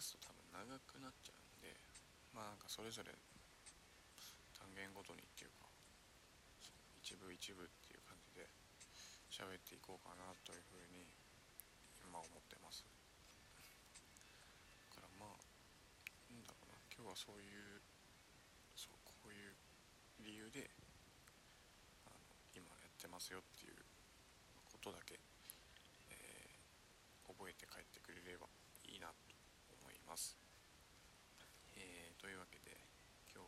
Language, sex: Japanese, male